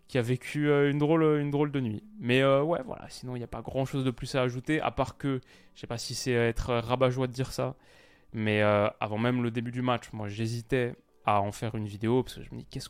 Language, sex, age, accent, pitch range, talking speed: French, male, 20-39, French, 110-135 Hz, 270 wpm